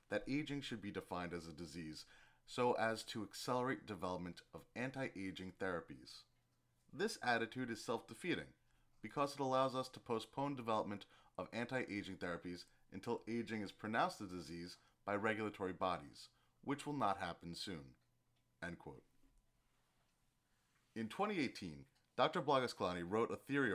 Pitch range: 95-130 Hz